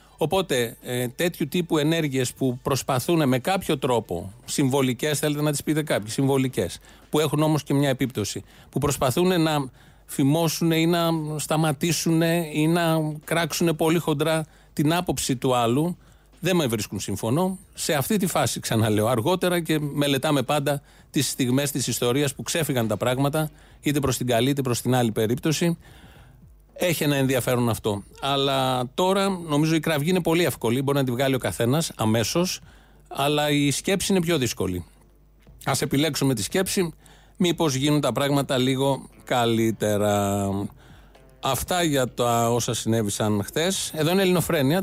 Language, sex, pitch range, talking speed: Greek, male, 125-160 Hz, 150 wpm